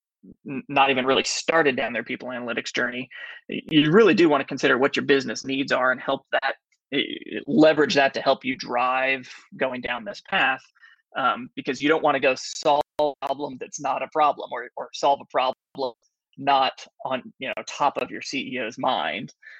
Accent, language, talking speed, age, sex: American, English, 185 wpm, 20-39, male